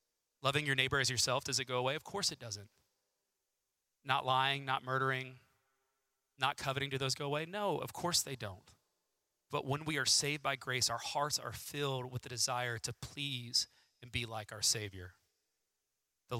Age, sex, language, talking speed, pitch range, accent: 30-49, male, English, 185 wpm, 120-140 Hz, American